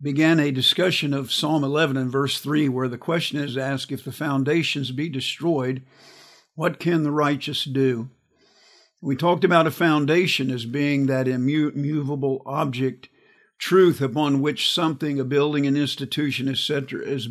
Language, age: English, 50-69